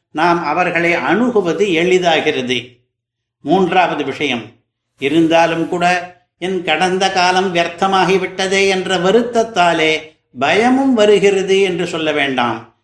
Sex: male